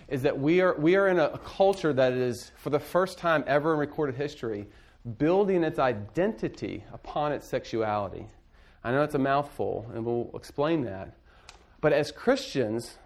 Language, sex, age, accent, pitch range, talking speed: English, male, 40-59, American, 115-150 Hz, 180 wpm